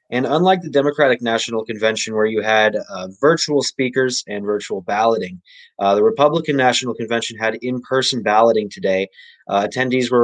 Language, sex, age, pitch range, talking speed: English, male, 20-39, 110-130 Hz, 160 wpm